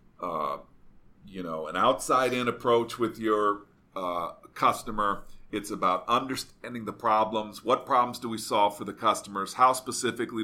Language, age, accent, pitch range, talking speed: English, 40-59, American, 95-120 Hz, 145 wpm